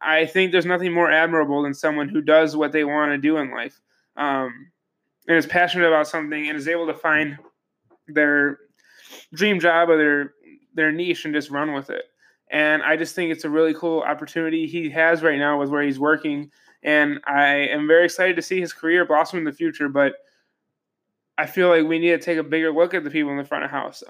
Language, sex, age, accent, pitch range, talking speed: English, male, 20-39, American, 150-170 Hz, 220 wpm